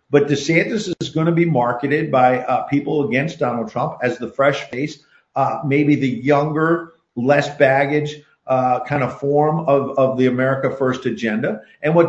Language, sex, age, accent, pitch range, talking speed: English, male, 50-69, American, 135-170 Hz, 175 wpm